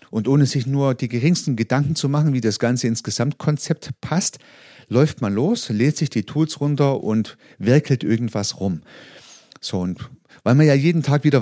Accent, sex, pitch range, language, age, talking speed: German, male, 110-150 Hz, German, 40-59, 185 wpm